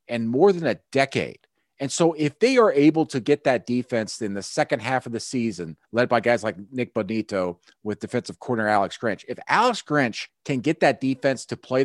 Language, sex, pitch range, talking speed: English, male, 115-150 Hz, 215 wpm